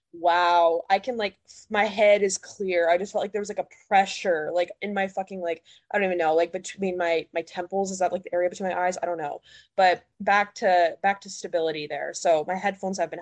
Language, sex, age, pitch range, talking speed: English, female, 20-39, 175-225 Hz, 245 wpm